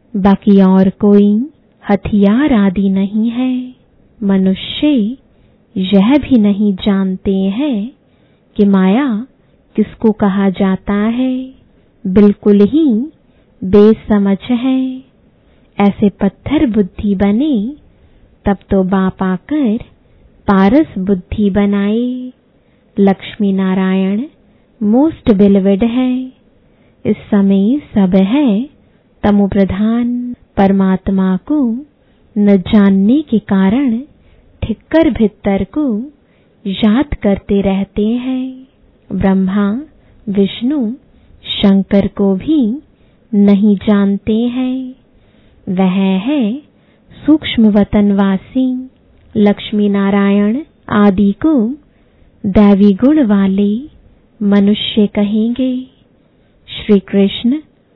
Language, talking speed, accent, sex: English, 85 wpm, Indian, female